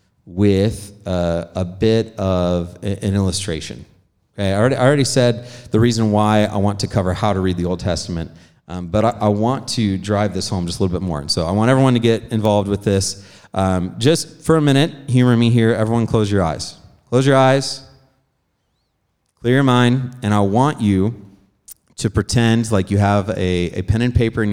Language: English